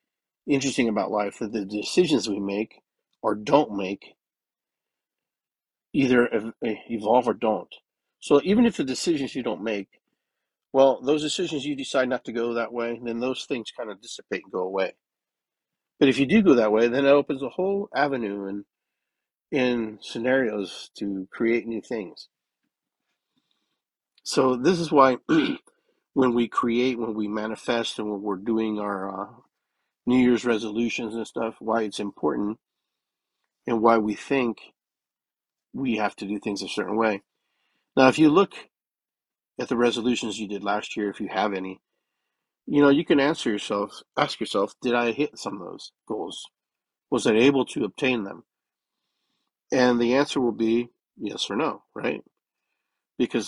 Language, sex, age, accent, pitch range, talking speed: English, male, 50-69, American, 105-135 Hz, 160 wpm